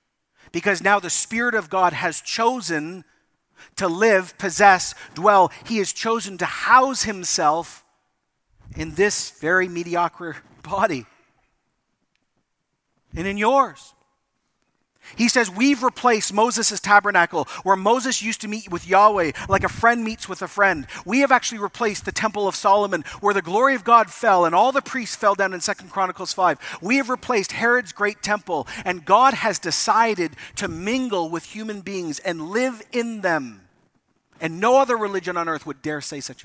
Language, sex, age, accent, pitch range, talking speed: English, male, 40-59, American, 170-220 Hz, 165 wpm